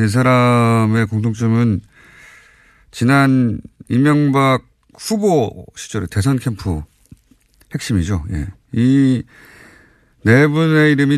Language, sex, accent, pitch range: Korean, male, native, 105-145 Hz